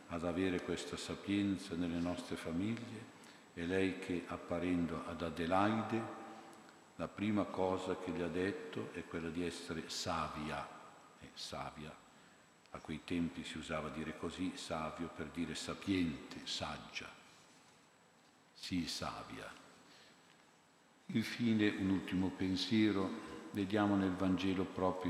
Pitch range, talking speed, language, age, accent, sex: 85-100 Hz, 120 wpm, Italian, 50-69, native, male